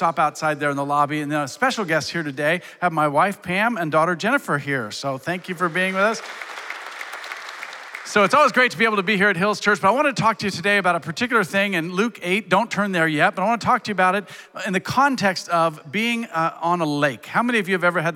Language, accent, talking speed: English, American, 280 wpm